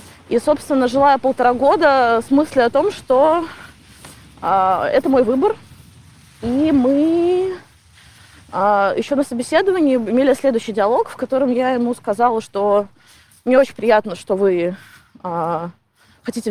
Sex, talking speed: female, 130 wpm